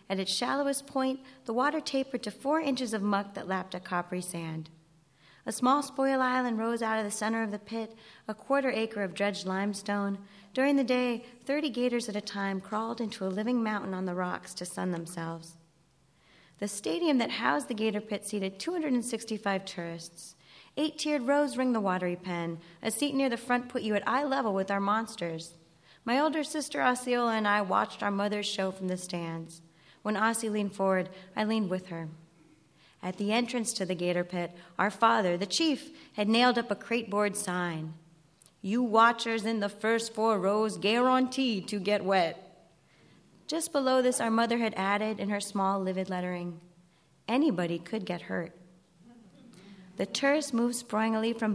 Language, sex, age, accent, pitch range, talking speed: English, female, 30-49, American, 185-240 Hz, 180 wpm